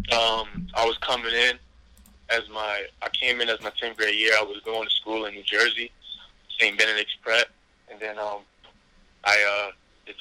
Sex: male